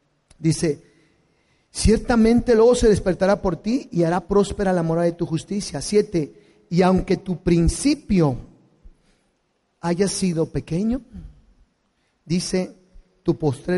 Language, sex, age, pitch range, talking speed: Spanish, male, 40-59, 150-200 Hz, 115 wpm